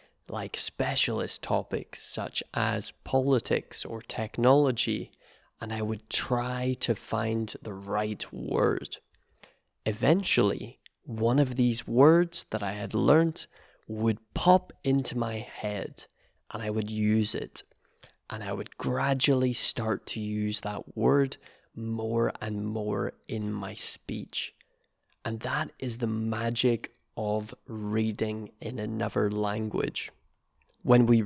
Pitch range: 105-125 Hz